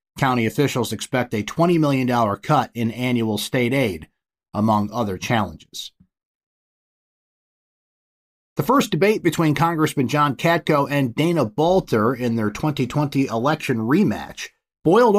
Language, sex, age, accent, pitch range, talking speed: English, male, 30-49, American, 110-150 Hz, 120 wpm